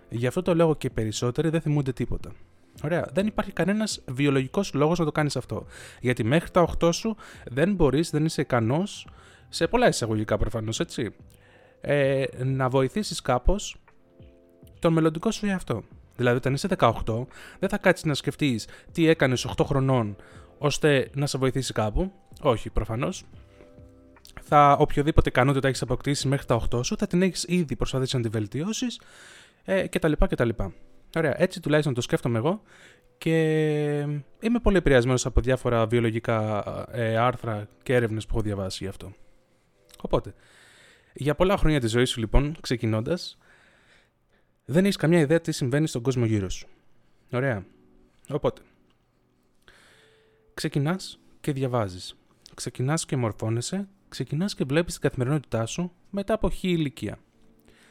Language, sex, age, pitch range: Greek, male, 20-39, 115-165 Hz